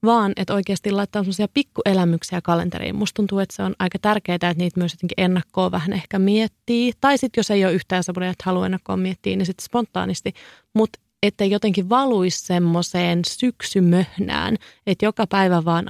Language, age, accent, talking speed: Finnish, 30-49, native, 175 wpm